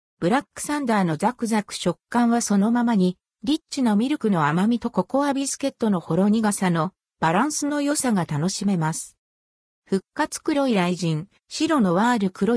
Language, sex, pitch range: Japanese, female, 180-265 Hz